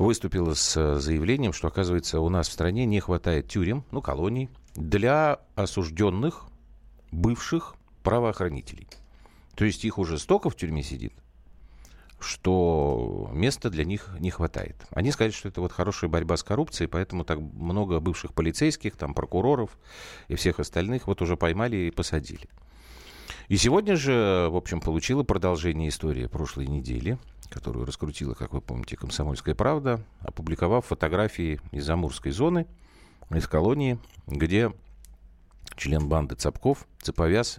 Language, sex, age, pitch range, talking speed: Russian, male, 40-59, 80-105 Hz, 135 wpm